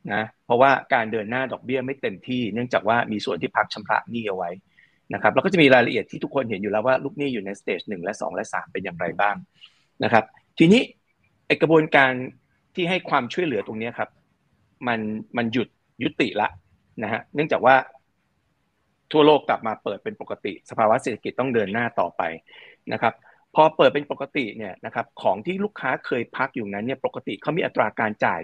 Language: Thai